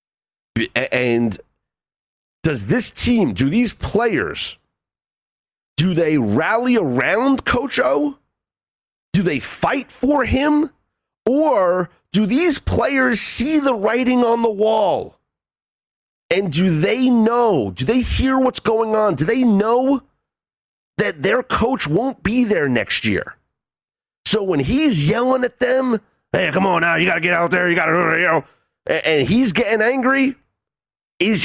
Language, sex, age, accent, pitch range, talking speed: English, male, 40-59, American, 155-240 Hz, 140 wpm